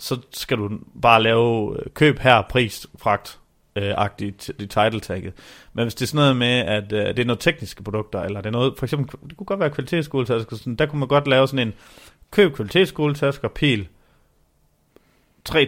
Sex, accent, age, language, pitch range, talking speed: male, native, 30-49, Danish, 105-135 Hz, 170 wpm